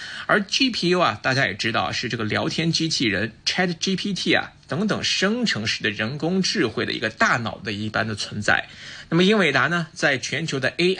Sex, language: male, Chinese